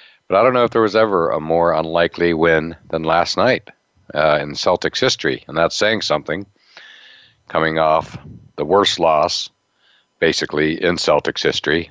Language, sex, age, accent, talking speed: English, male, 60-79, American, 160 wpm